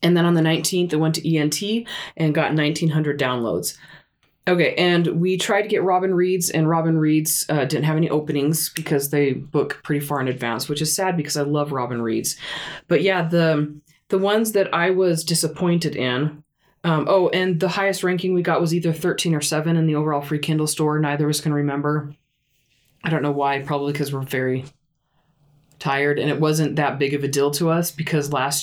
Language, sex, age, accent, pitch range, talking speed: English, female, 20-39, American, 145-170 Hz, 210 wpm